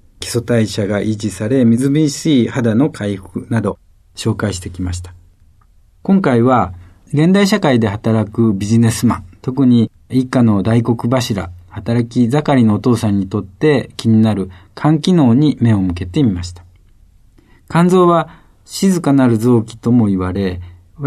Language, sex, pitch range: Japanese, male, 95-130 Hz